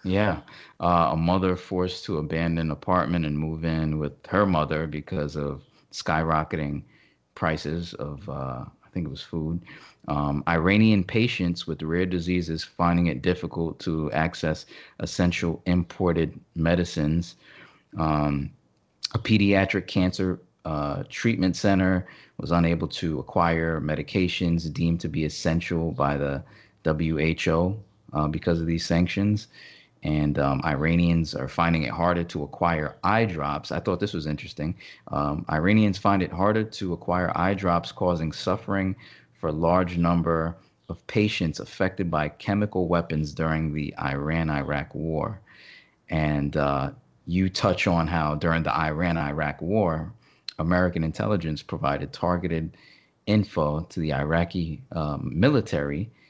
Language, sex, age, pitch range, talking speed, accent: English, male, 30-49, 75-90 Hz, 135 wpm, American